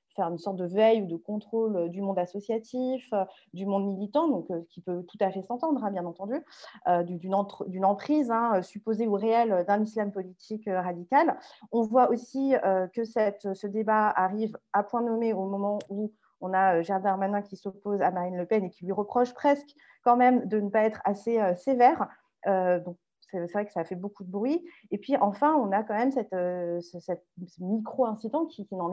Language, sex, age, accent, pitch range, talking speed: French, female, 30-49, French, 190-245 Hz, 210 wpm